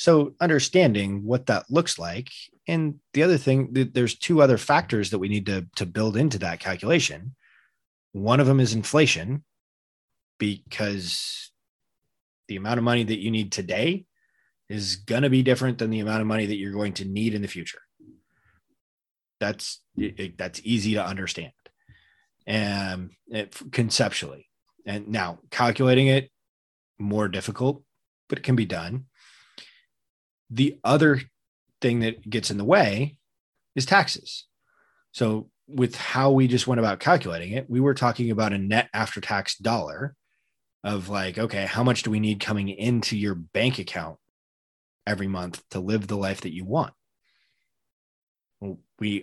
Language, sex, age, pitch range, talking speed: English, male, 20-39, 100-130 Hz, 150 wpm